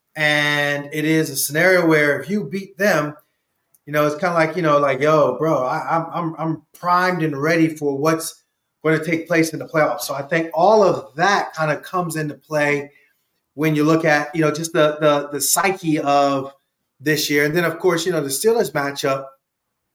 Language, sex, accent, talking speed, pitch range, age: English, male, American, 210 wpm, 145-185 Hz, 30-49